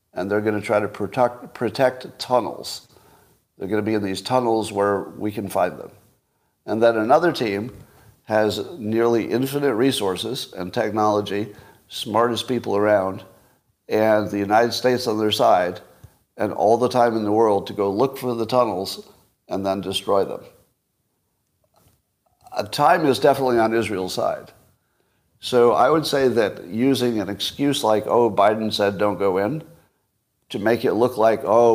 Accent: American